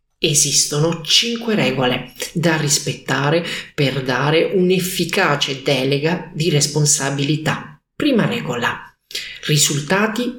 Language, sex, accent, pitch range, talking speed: Italian, male, native, 145-185 Hz, 80 wpm